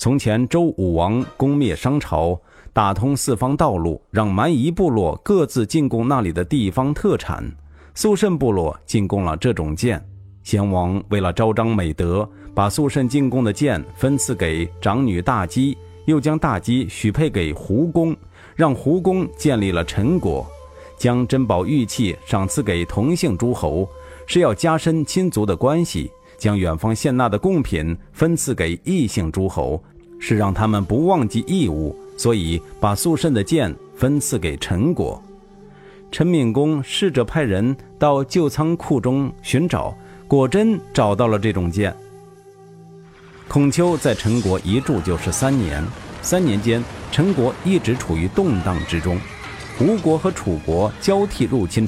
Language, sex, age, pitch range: Chinese, male, 50-69, 90-145 Hz